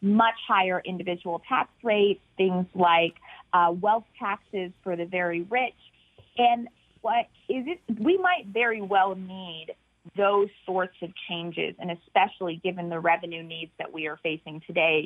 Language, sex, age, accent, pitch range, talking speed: English, female, 30-49, American, 185-245 Hz, 150 wpm